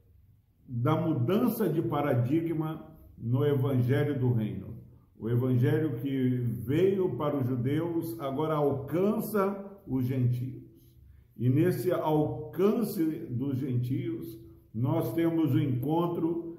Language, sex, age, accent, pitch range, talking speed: Portuguese, male, 50-69, Brazilian, 130-165 Hz, 100 wpm